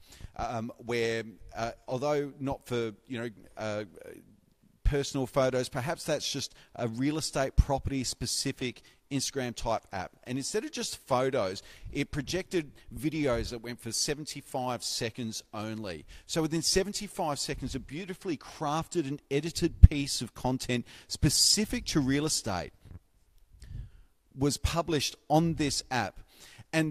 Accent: Australian